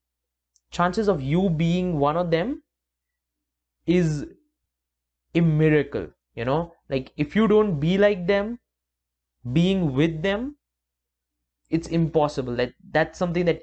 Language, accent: English, Indian